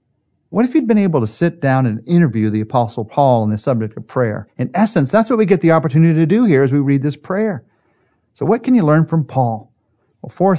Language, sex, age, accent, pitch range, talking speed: English, male, 50-69, American, 125-190 Hz, 245 wpm